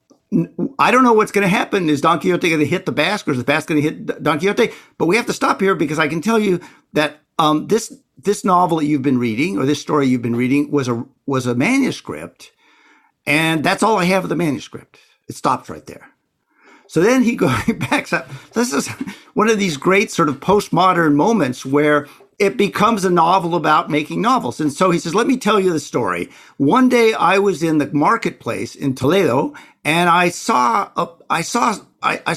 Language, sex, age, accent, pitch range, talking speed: English, male, 50-69, American, 150-215 Hz, 215 wpm